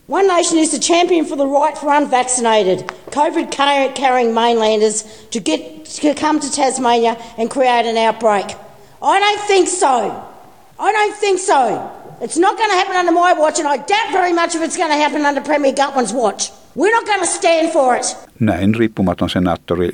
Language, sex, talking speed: Finnish, female, 185 wpm